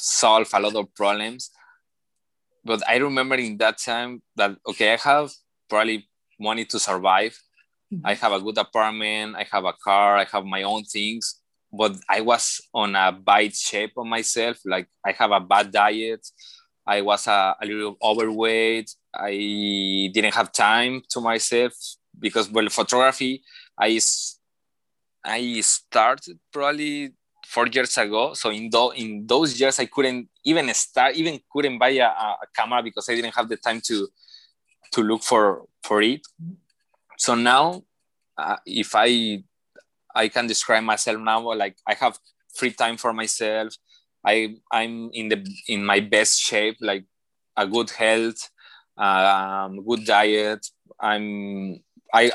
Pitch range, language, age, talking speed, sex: 105-120 Hz, English, 20-39, 150 wpm, male